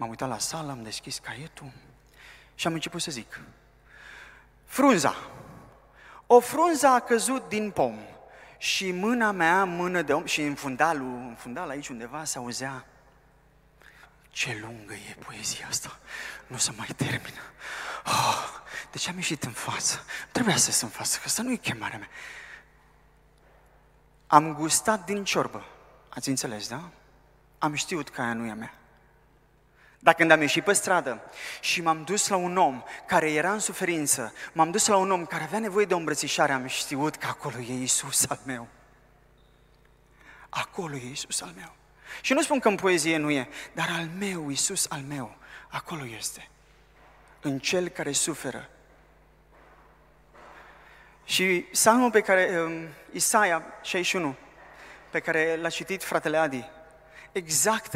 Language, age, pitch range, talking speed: Romanian, 30-49, 140-185 Hz, 155 wpm